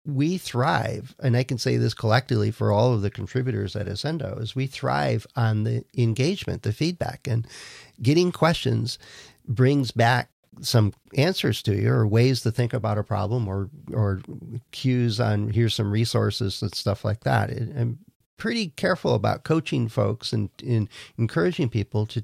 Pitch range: 110-130 Hz